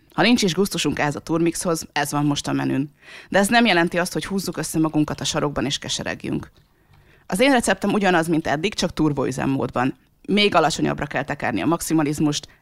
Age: 30-49